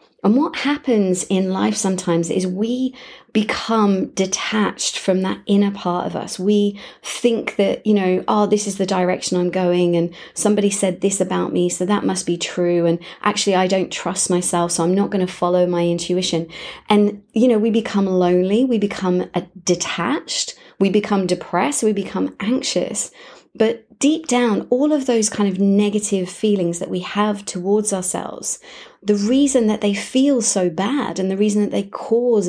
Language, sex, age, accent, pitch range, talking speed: English, female, 30-49, British, 180-220 Hz, 175 wpm